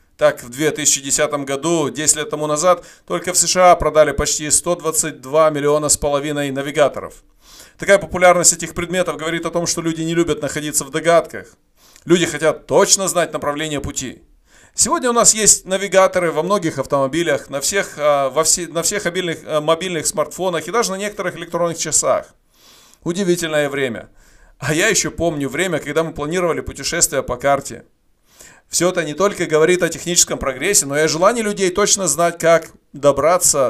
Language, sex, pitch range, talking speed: Russian, male, 145-185 Hz, 160 wpm